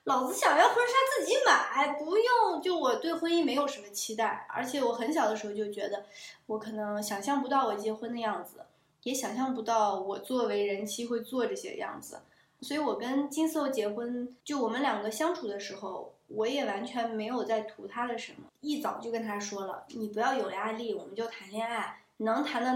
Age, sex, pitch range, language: 20-39, female, 210-270 Hz, Chinese